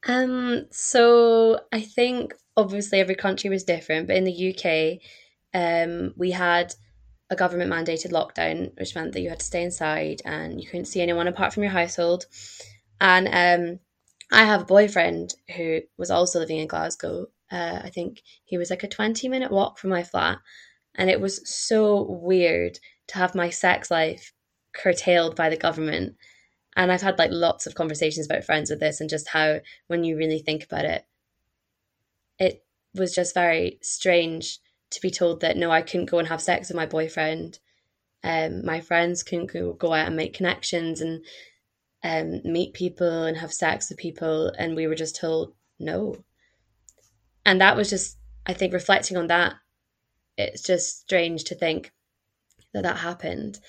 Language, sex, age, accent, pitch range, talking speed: English, female, 10-29, British, 160-185 Hz, 175 wpm